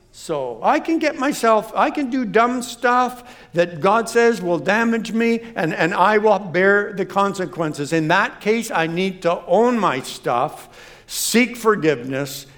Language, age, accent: English, 60-79, American